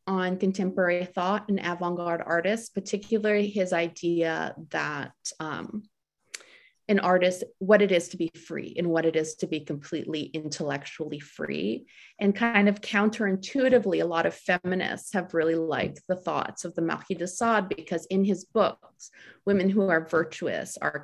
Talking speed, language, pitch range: 155 wpm, English, 170-200 Hz